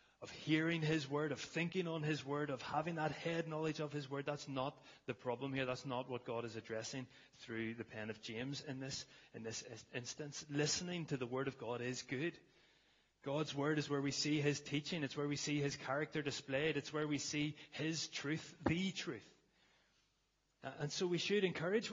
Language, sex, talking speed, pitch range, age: English, male, 200 wpm, 130-155 Hz, 30-49